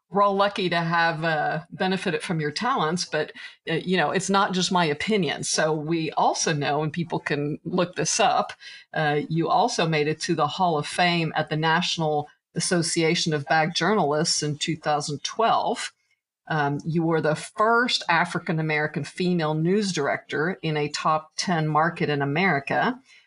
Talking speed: 165 wpm